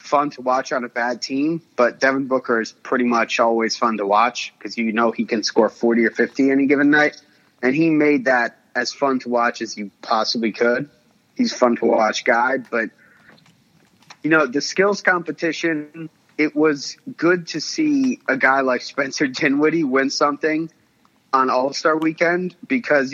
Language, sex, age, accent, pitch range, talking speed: English, male, 30-49, American, 120-150 Hz, 175 wpm